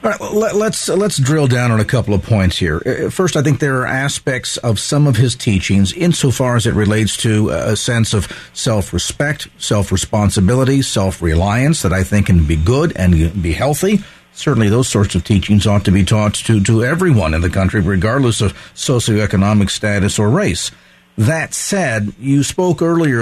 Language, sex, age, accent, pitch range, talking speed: English, male, 50-69, American, 105-145 Hz, 180 wpm